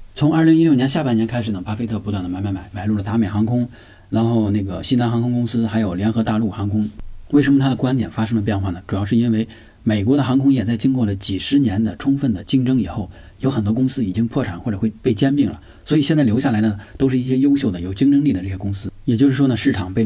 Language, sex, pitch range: Chinese, male, 100-125 Hz